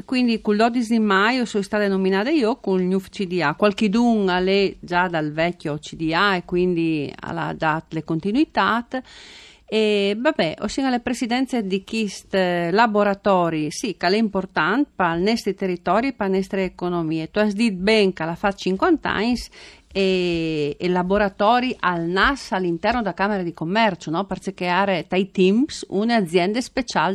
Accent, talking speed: native, 165 wpm